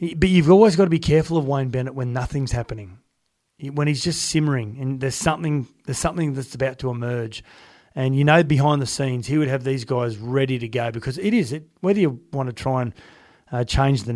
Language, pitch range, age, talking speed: English, 120-145 Hz, 30-49, 230 wpm